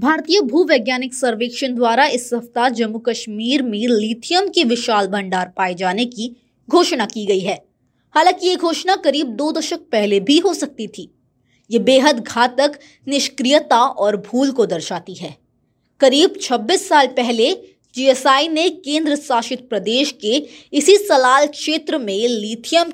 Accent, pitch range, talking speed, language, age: native, 230-310 Hz, 145 wpm, Hindi, 20-39